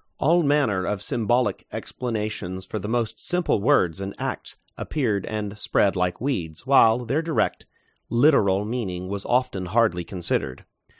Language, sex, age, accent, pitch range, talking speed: English, male, 40-59, American, 95-130 Hz, 140 wpm